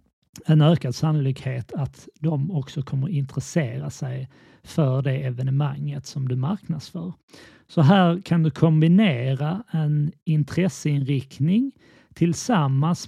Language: Swedish